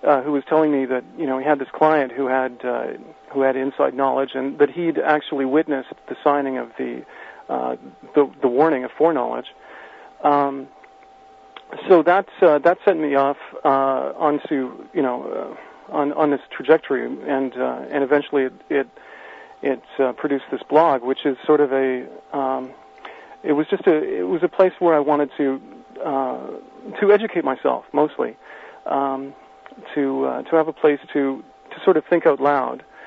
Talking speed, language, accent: 180 wpm, English, American